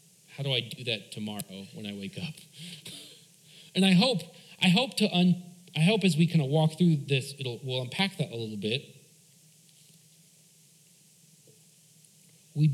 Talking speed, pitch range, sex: 160 wpm, 150-170 Hz, male